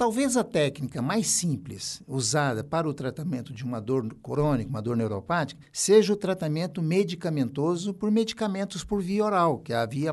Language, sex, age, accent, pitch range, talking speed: Portuguese, male, 60-79, Brazilian, 125-185 Hz, 170 wpm